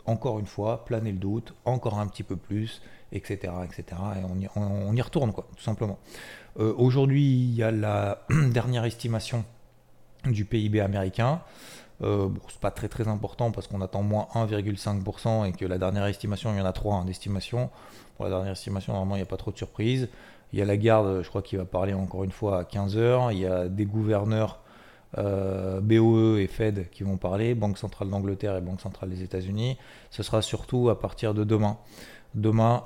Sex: male